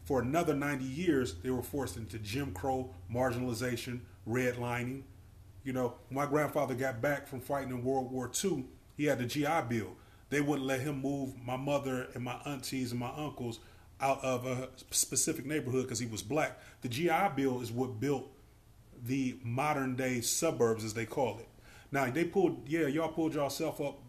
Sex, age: male, 30-49